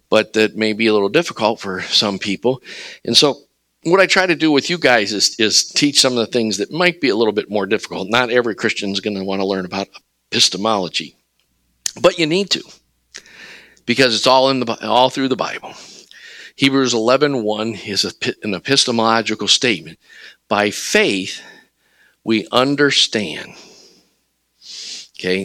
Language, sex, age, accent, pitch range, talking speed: English, male, 50-69, American, 105-140 Hz, 160 wpm